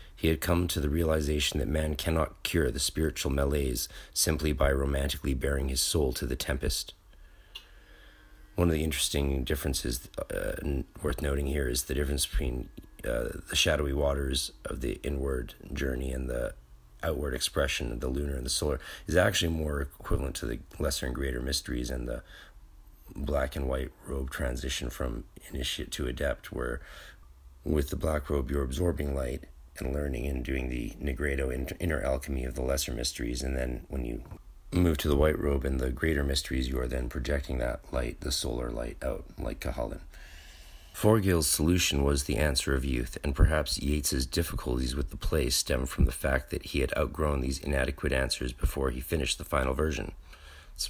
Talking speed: 180 wpm